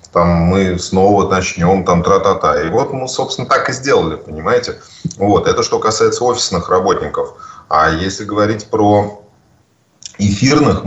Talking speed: 150 wpm